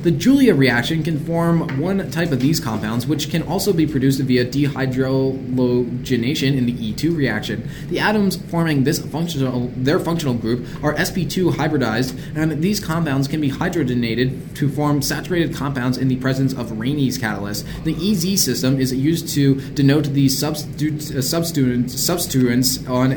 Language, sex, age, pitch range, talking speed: English, male, 20-39, 130-165 Hz, 150 wpm